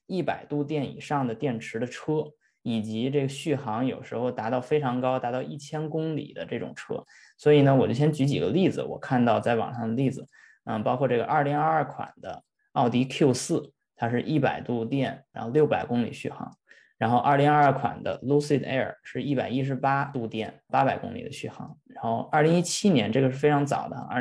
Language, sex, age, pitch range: Chinese, male, 20-39, 125-150 Hz